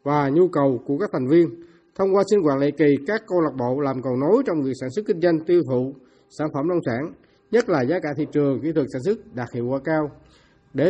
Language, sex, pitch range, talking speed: Vietnamese, male, 145-190 Hz, 260 wpm